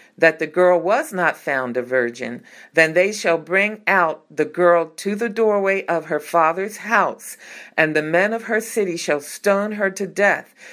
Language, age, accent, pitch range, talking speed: English, 50-69, American, 150-200 Hz, 185 wpm